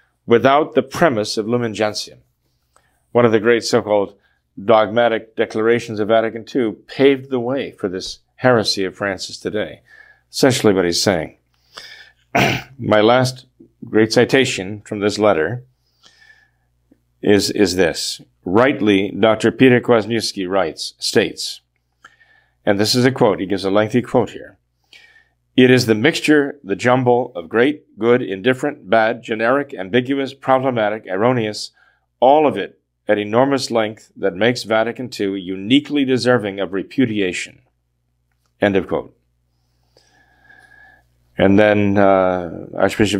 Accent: American